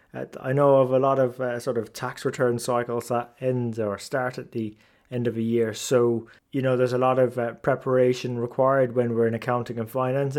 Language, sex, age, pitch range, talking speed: English, male, 20-39, 120-140 Hz, 220 wpm